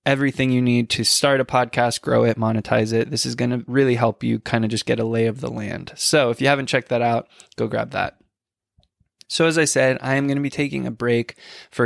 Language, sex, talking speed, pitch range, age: English, male, 255 wpm, 110-120 Hz, 20-39